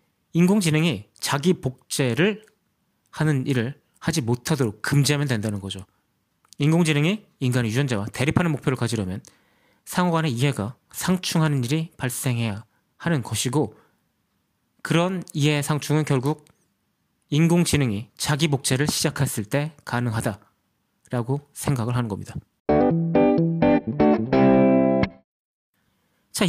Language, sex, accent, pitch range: Korean, male, native, 120-170 Hz